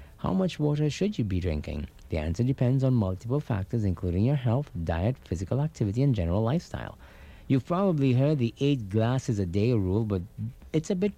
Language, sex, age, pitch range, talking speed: English, male, 50-69, 95-130 Hz, 190 wpm